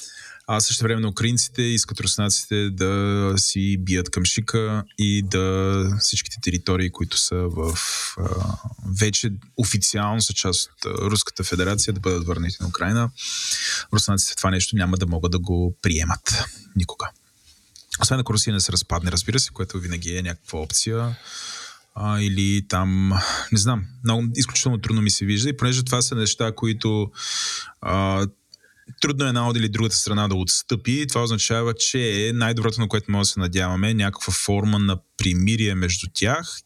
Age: 20-39